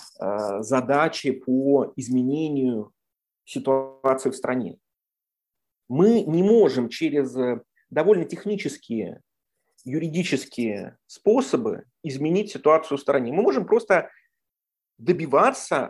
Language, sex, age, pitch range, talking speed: English, male, 30-49, 130-180 Hz, 85 wpm